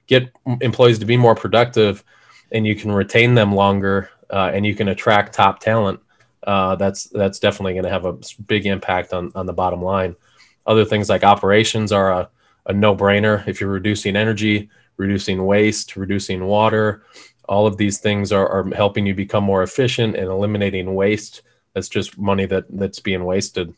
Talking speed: 180 wpm